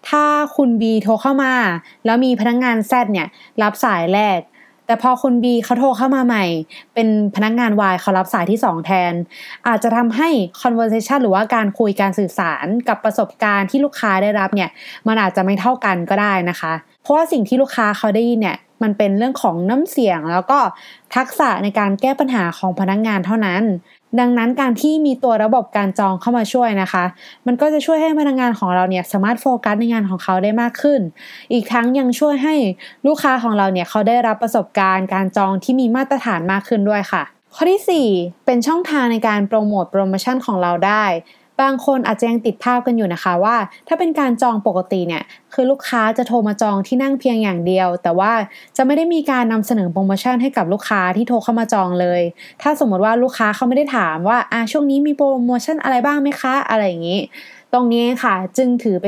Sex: female